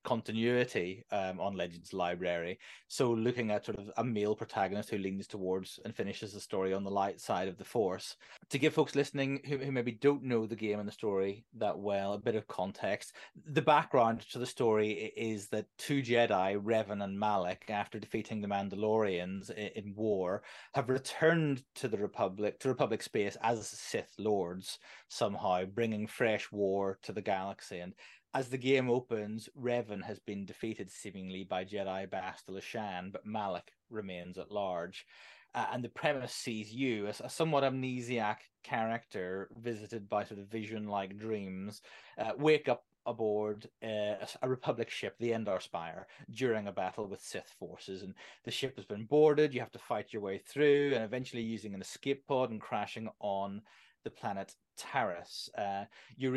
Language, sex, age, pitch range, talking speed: English, male, 30-49, 100-125 Hz, 175 wpm